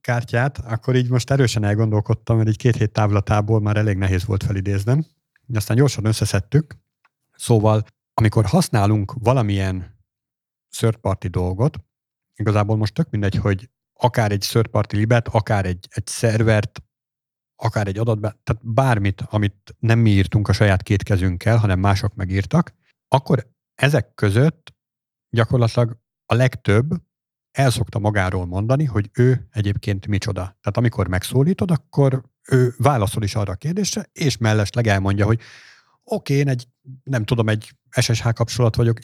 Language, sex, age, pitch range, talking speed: Hungarian, male, 50-69, 105-125 Hz, 145 wpm